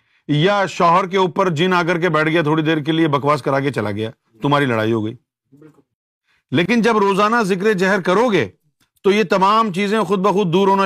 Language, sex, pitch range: Urdu, male, 135-185 Hz